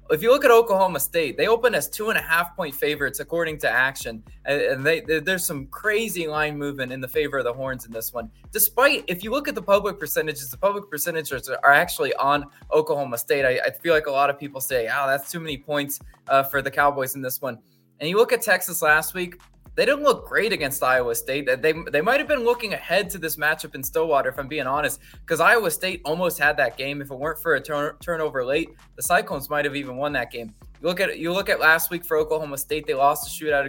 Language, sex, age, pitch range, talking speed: English, male, 20-39, 145-190 Hz, 240 wpm